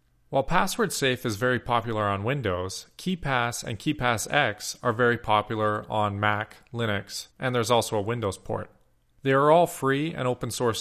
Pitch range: 100-140 Hz